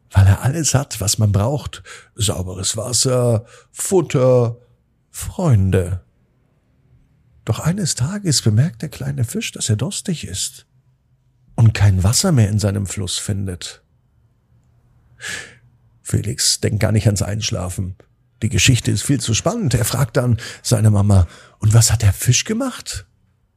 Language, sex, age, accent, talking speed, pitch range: German, male, 50-69, German, 135 wpm, 105-160 Hz